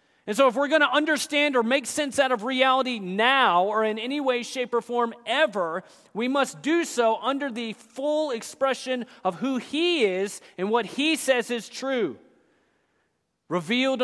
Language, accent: English, American